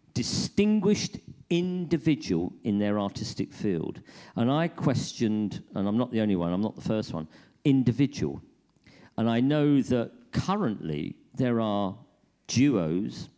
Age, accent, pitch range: 50-69, British, 95-140 Hz